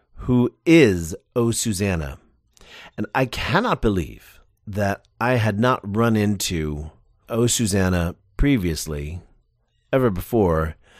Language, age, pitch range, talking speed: English, 40-59, 90-125 Hz, 105 wpm